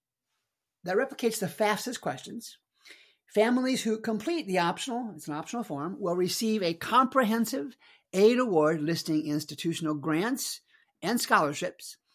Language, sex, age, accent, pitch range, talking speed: English, male, 50-69, American, 155-215 Hz, 125 wpm